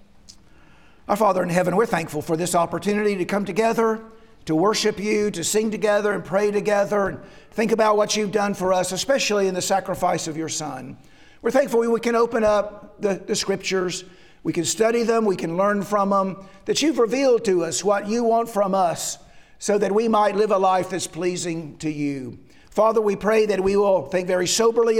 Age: 50-69